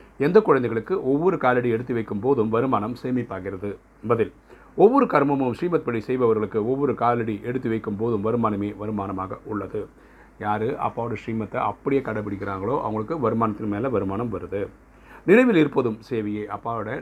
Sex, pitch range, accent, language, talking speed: male, 105-125 Hz, native, Tamil, 125 wpm